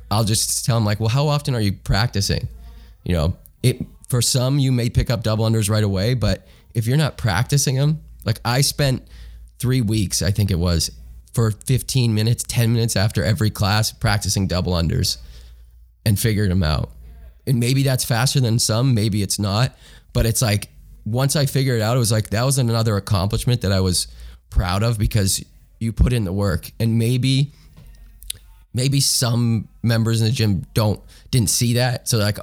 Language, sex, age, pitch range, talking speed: English, male, 20-39, 95-120 Hz, 190 wpm